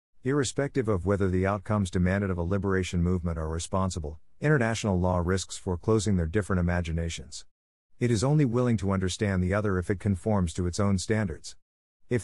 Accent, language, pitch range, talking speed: American, English, 90-115 Hz, 170 wpm